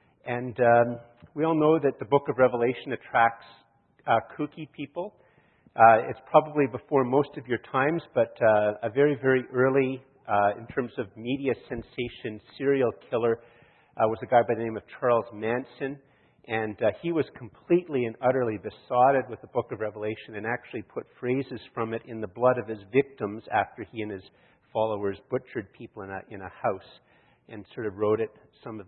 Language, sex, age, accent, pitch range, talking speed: English, male, 50-69, American, 105-130 Hz, 185 wpm